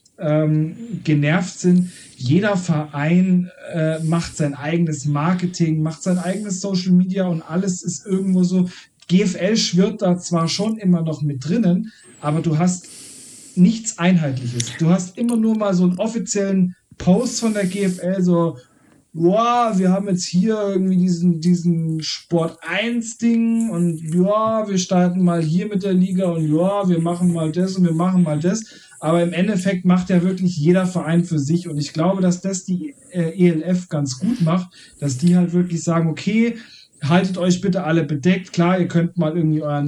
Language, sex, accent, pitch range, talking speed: German, male, German, 160-190 Hz, 175 wpm